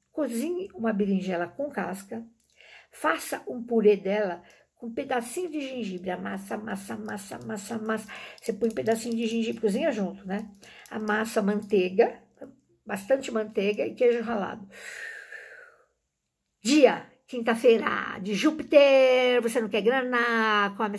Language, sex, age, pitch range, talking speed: Portuguese, female, 60-79, 195-235 Hz, 125 wpm